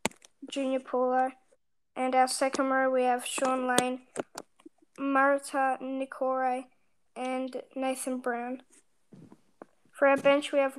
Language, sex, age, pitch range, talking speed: Amharic, female, 10-29, 255-275 Hz, 110 wpm